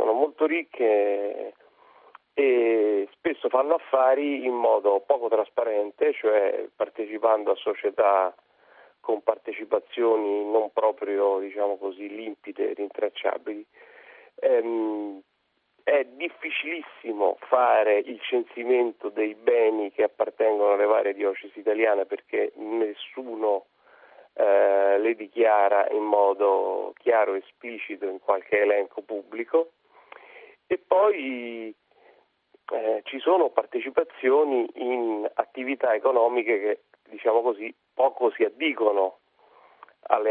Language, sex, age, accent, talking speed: Italian, male, 40-59, native, 100 wpm